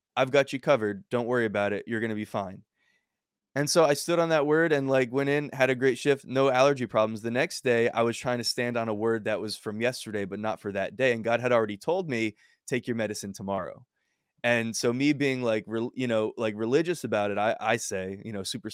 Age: 20-39